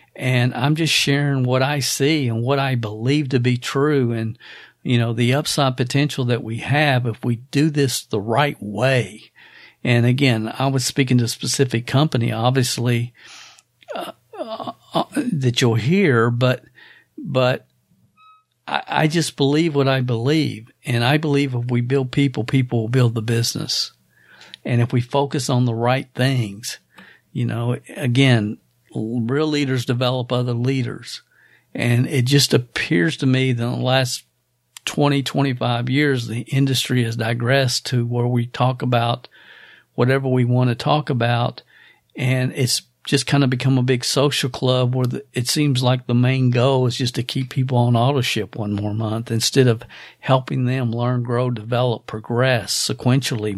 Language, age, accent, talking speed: English, 50-69, American, 165 wpm